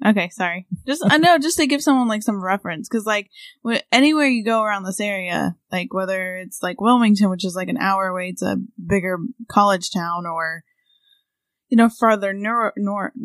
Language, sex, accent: English, female, American